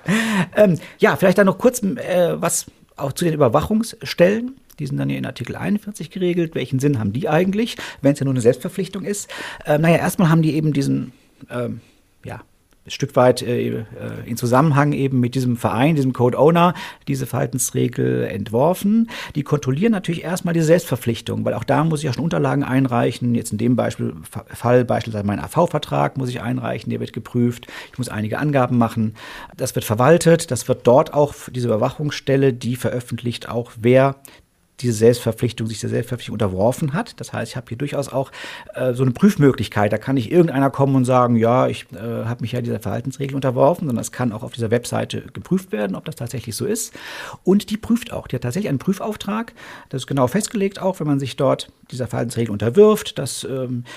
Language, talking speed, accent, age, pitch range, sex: German, 195 wpm, German, 50-69, 120-165 Hz, male